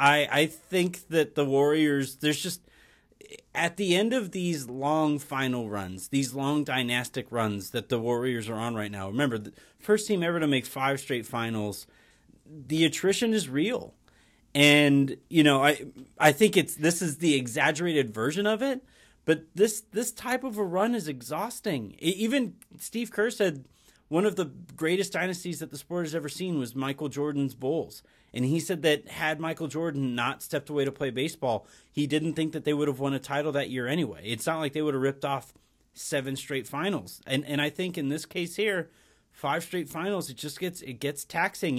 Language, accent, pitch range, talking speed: English, American, 135-170 Hz, 195 wpm